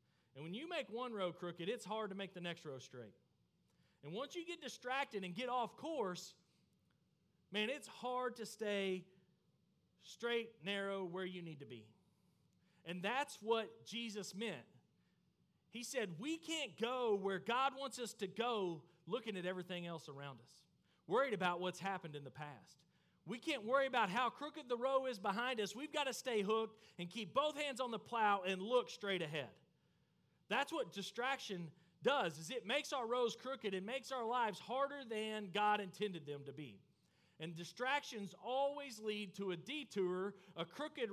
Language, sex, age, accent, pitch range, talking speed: English, male, 40-59, American, 180-245 Hz, 180 wpm